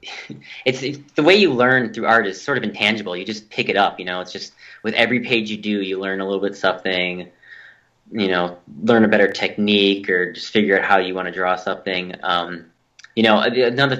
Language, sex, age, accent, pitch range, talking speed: English, male, 20-39, American, 95-125 Hz, 225 wpm